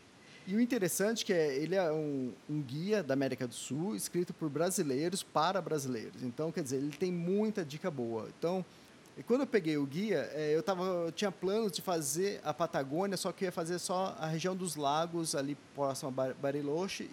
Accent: Brazilian